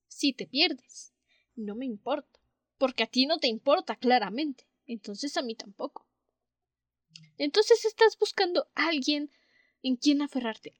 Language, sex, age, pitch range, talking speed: Spanish, female, 10-29, 250-335 Hz, 140 wpm